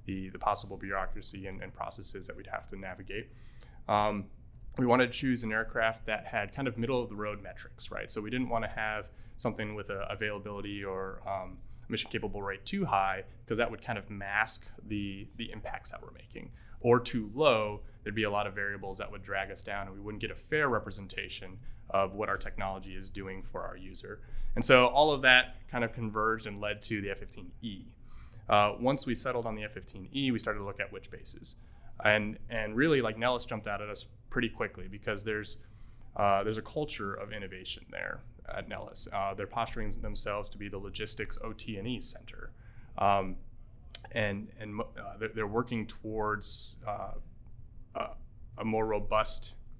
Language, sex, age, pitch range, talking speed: English, male, 20-39, 100-115 Hz, 185 wpm